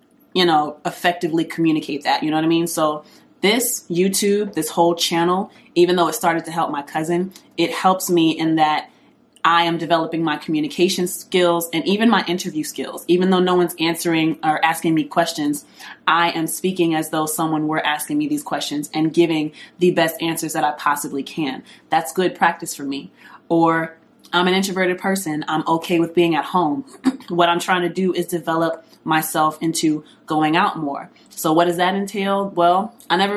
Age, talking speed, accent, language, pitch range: 20-39, 190 wpm, American, English, 160-180 Hz